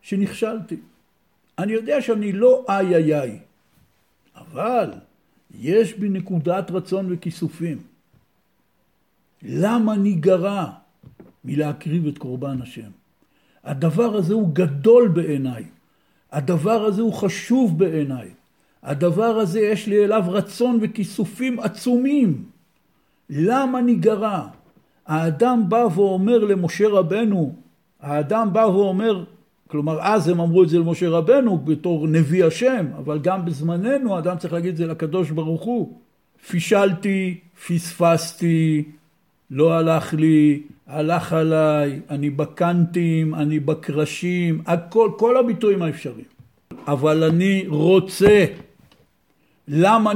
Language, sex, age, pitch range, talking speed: Hebrew, male, 60-79, 160-210 Hz, 105 wpm